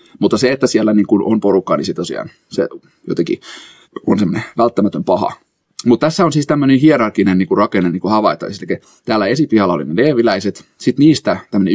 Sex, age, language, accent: male, 30-49, Finnish, native